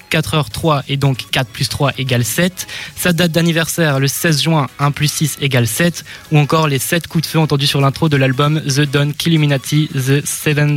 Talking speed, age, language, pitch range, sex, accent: 210 wpm, 20-39, French, 140-170 Hz, male, French